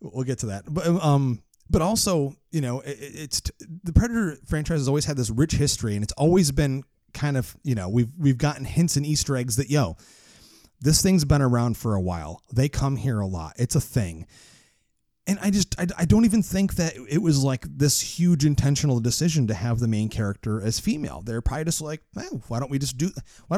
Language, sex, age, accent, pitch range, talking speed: English, male, 30-49, American, 120-165 Hz, 225 wpm